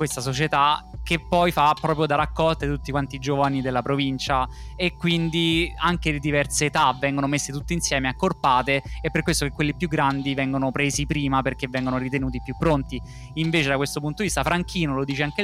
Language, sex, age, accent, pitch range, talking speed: Italian, male, 20-39, native, 135-160 Hz, 195 wpm